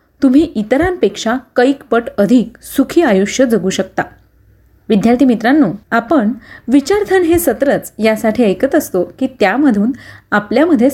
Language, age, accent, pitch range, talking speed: Marathi, 30-49, native, 205-285 Hz, 110 wpm